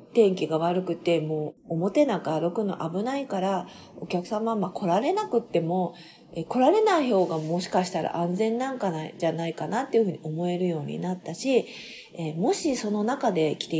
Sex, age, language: female, 40-59, Japanese